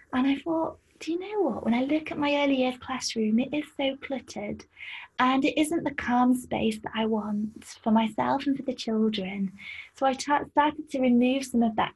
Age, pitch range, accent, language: 20-39, 220-275 Hz, British, English